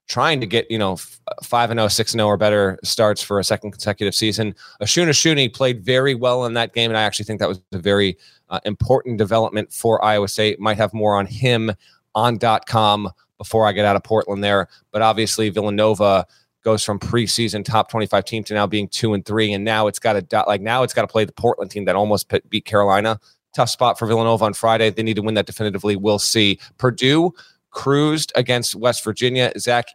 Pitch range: 105-125 Hz